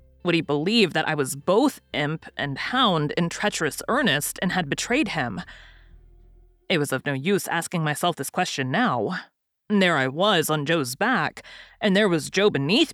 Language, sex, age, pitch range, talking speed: English, female, 30-49, 140-195 Hz, 175 wpm